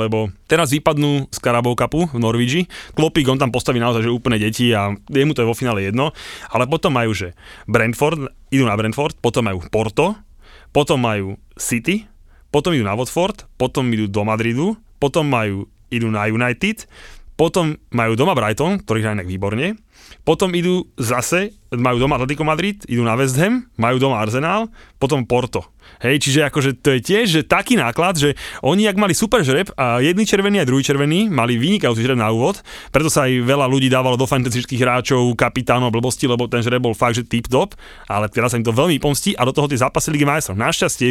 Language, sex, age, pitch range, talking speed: Slovak, male, 20-39, 115-150 Hz, 195 wpm